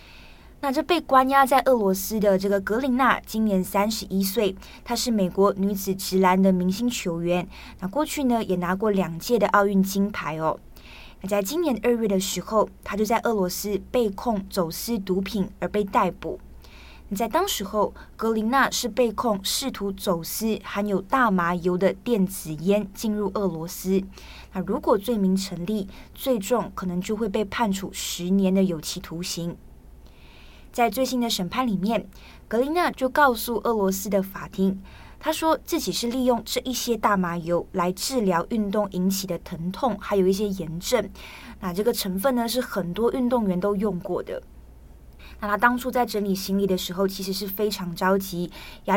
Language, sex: Chinese, female